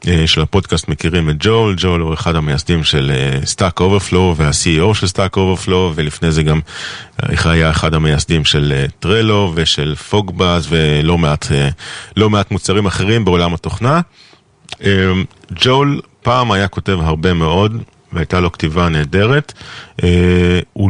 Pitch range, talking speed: 85-110 Hz, 145 wpm